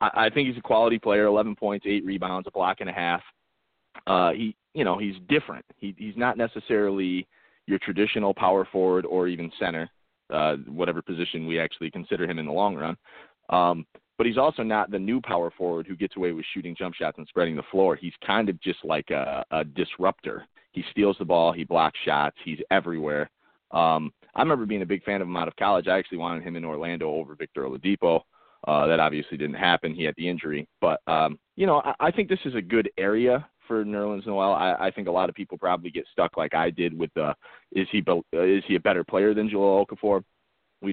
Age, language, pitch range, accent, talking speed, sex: 30-49, English, 85-105 Hz, American, 225 wpm, male